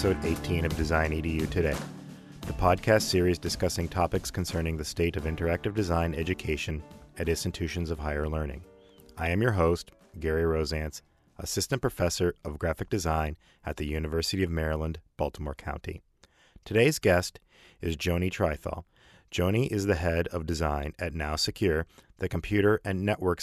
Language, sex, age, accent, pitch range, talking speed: English, male, 40-59, American, 80-95 Hz, 150 wpm